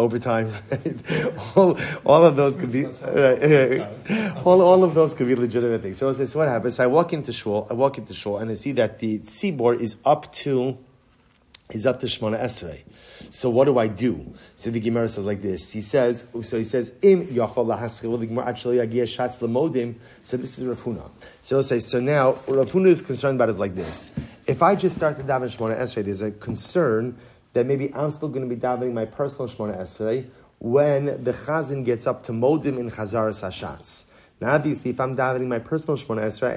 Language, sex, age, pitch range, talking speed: English, male, 30-49, 115-145 Hz, 200 wpm